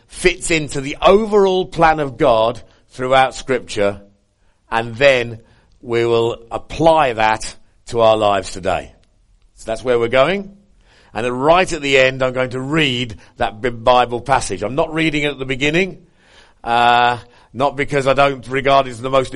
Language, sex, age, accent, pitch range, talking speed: English, male, 50-69, British, 115-155 Hz, 165 wpm